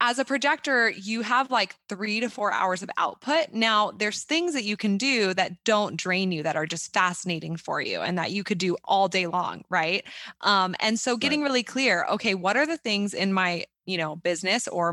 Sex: female